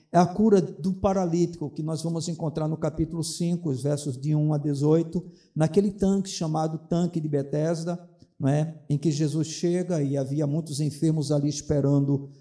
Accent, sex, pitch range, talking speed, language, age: Brazilian, male, 150-180 Hz, 165 wpm, Portuguese, 50-69